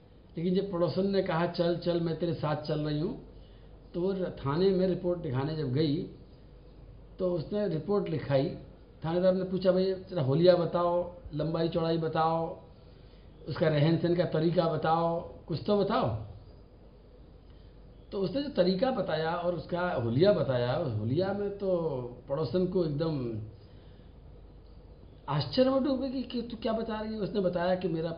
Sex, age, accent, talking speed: male, 60-79, native, 155 wpm